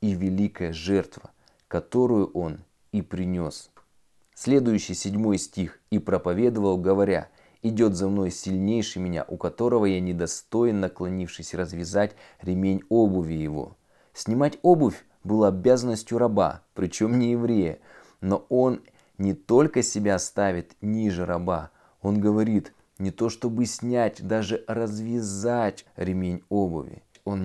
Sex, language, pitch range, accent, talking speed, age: male, Russian, 90-110 Hz, native, 115 wpm, 20-39